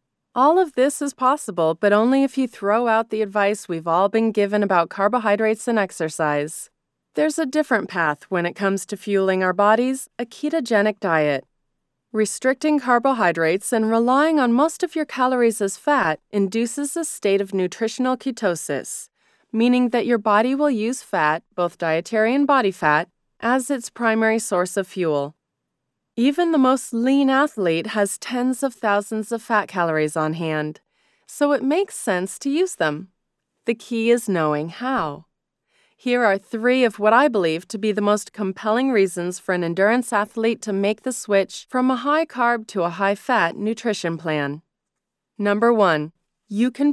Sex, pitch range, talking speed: female, 185-255 Hz, 165 wpm